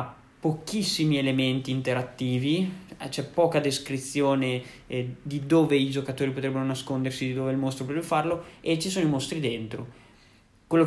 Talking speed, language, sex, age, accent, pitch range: 150 wpm, Italian, male, 20-39, native, 130-150 Hz